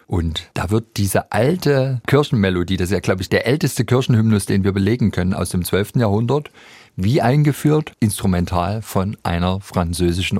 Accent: German